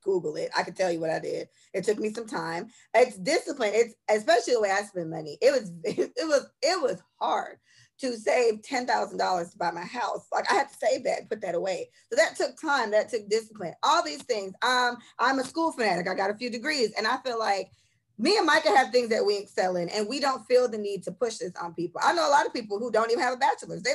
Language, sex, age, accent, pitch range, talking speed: English, female, 20-39, American, 200-295 Hz, 265 wpm